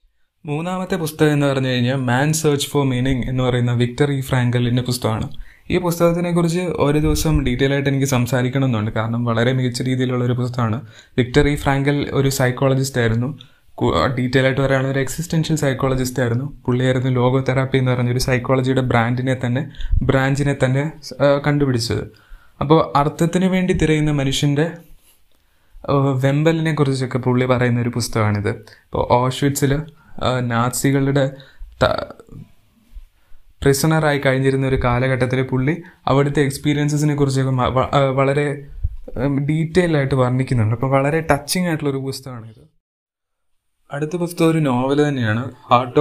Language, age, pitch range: Malayalam, 20-39, 125-145 Hz